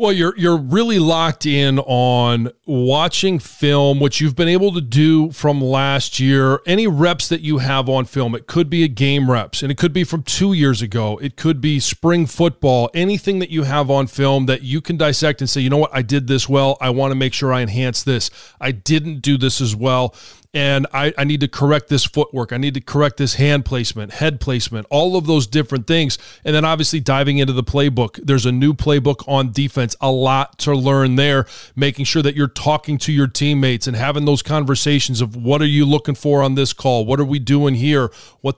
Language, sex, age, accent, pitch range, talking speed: English, male, 30-49, American, 130-150 Hz, 225 wpm